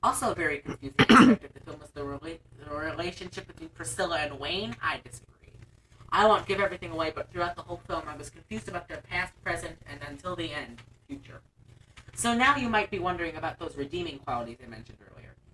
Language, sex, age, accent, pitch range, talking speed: English, female, 30-49, American, 120-170 Hz, 205 wpm